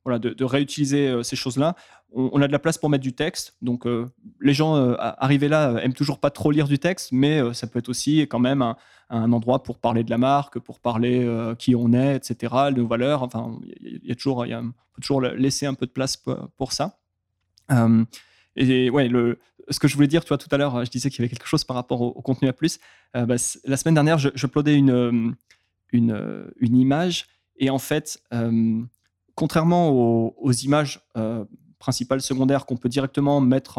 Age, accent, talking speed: 20-39, French, 220 wpm